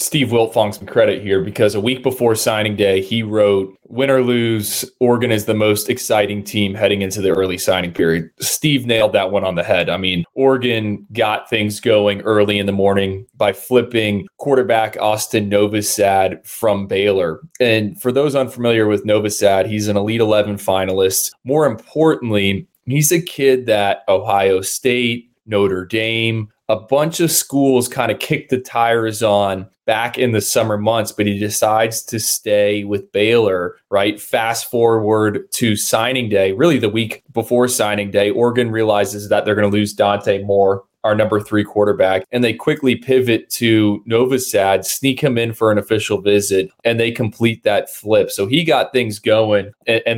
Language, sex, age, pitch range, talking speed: English, male, 20-39, 100-125 Hz, 175 wpm